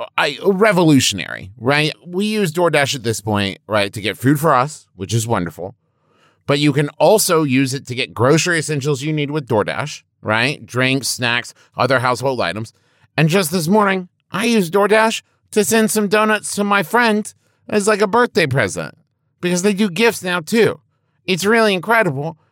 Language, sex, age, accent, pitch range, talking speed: English, male, 30-49, American, 110-175 Hz, 175 wpm